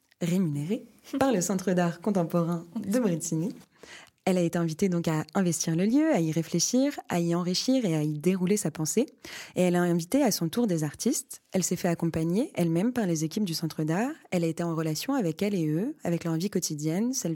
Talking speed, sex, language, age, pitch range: 220 wpm, female, French, 20-39, 170-225 Hz